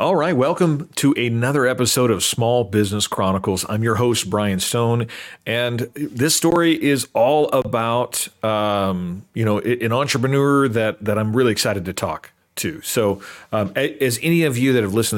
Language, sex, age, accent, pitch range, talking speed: English, male, 40-59, American, 100-125 Hz, 170 wpm